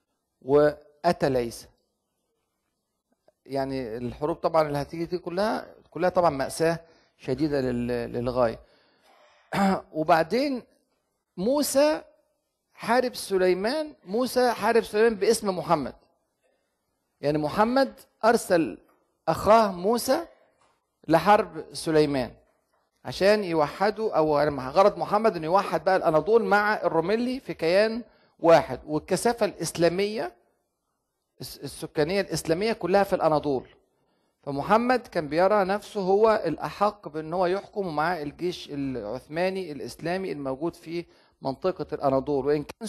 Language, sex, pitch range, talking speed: Arabic, male, 155-215 Hz, 95 wpm